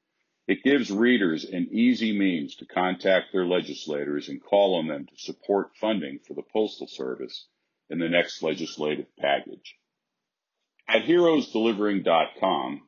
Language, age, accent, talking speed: English, 50-69, American, 130 wpm